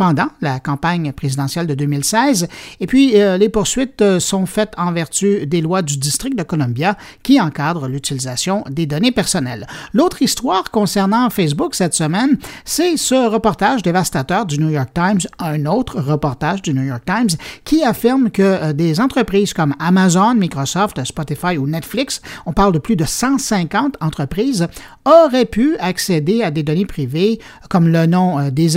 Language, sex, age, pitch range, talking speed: French, male, 50-69, 160-230 Hz, 160 wpm